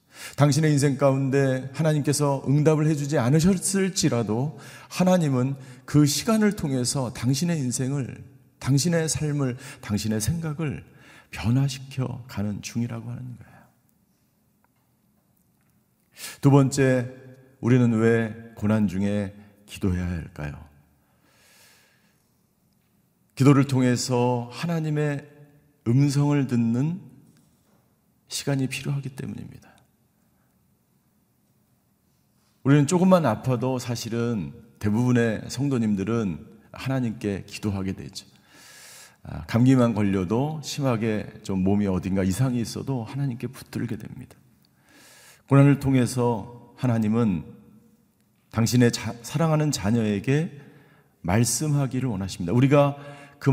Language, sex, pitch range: Korean, male, 115-145 Hz